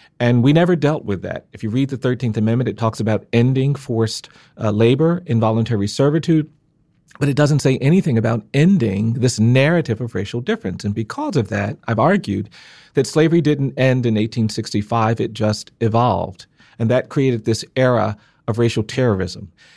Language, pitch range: English, 110-140 Hz